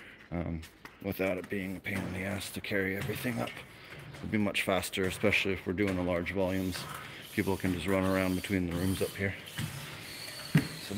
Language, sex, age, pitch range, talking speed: English, male, 30-49, 95-110 Hz, 195 wpm